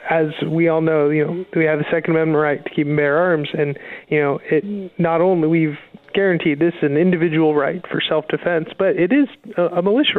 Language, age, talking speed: English, 20-39, 225 wpm